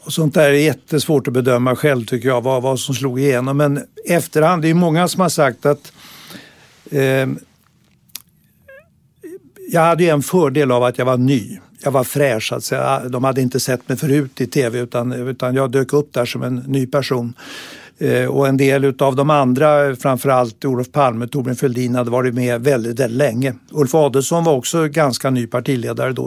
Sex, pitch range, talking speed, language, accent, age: male, 130-155 Hz, 175 wpm, Swedish, native, 60-79